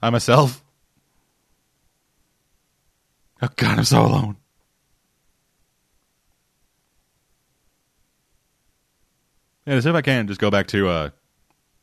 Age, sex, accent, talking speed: 30-49, male, American, 85 wpm